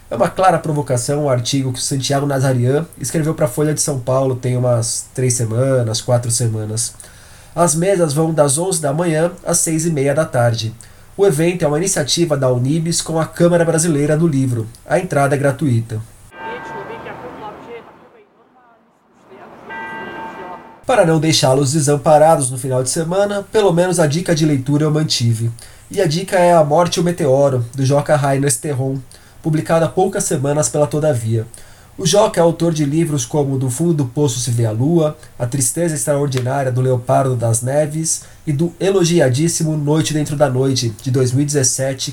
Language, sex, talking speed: Portuguese, male, 170 wpm